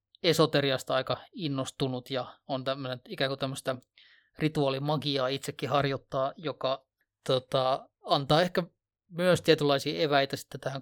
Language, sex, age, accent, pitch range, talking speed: Finnish, male, 30-49, native, 135-150 Hz, 105 wpm